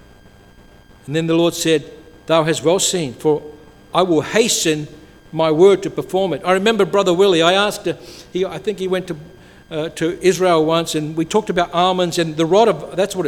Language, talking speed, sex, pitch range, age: English, 200 wpm, male, 165-215 Hz, 60-79